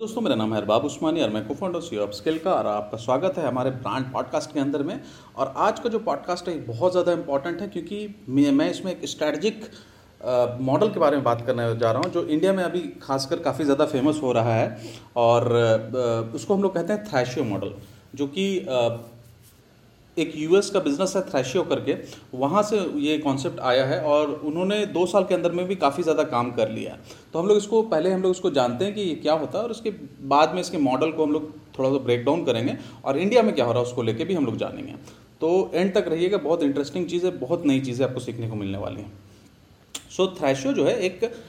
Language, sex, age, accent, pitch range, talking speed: Hindi, male, 40-59, native, 120-180 Hz, 230 wpm